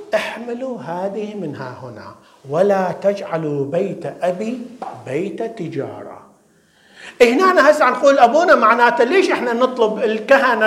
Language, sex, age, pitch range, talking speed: English, male, 50-69, 170-250 Hz, 110 wpm